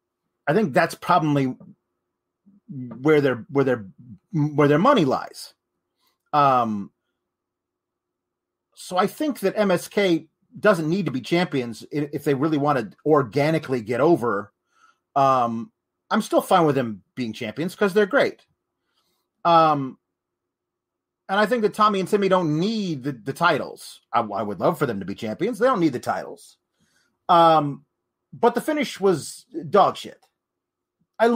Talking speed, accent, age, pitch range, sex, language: 145 wpm, American, 30-49, 145-195 Hz, male, English